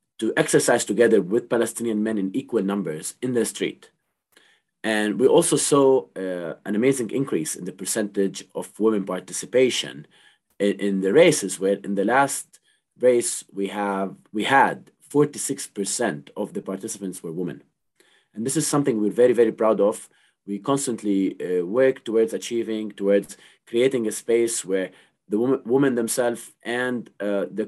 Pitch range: 95-120 Hz